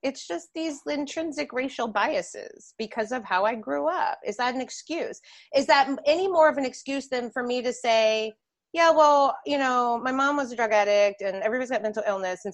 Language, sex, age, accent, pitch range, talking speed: English, female, 30-49, American, 175-245 Hz, 210 wpm